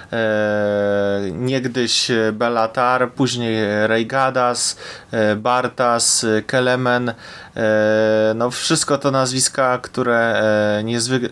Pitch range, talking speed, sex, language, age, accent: 110-135 Hz, 70 wpm, male, Polish, 20-39, native